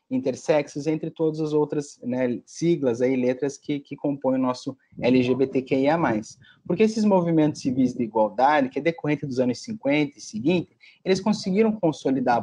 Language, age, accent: Portuguese, 30-49, Brazilian